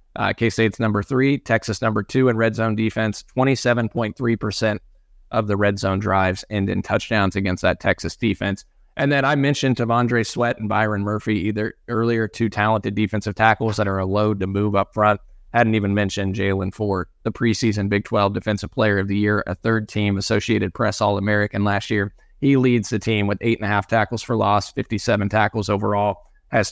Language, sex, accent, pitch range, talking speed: English, male, American, 100-115 Hz, 190 wpm